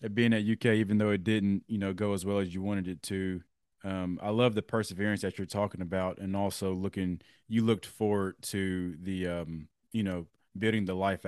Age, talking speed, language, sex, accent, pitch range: 20-39, 215 wpm, English, male, American, 95-110 Hz